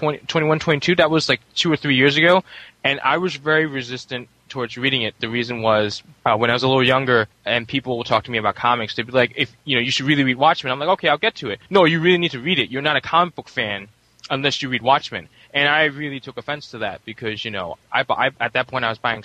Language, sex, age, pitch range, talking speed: English, male, 10-29, 110-140 Hz, 280 wpm